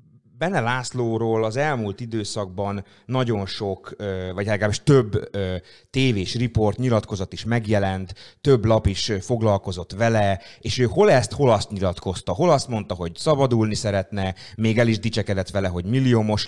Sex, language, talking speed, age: male, Hungarian, 145 wpm, 30-49